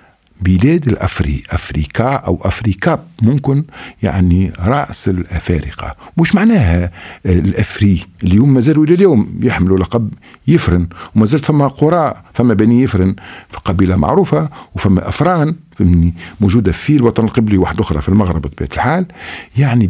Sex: male